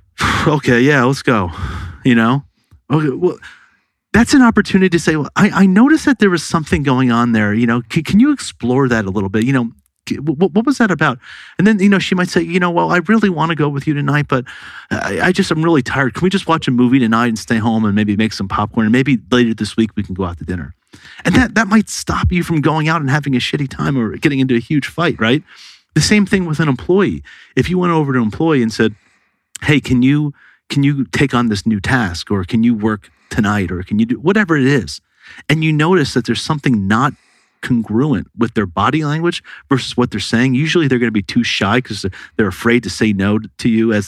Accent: American